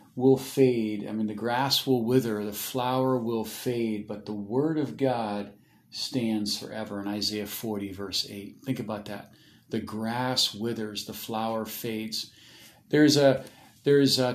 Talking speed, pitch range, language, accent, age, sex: 155 wpm, 110-130 Hz, English, American, 40-59, male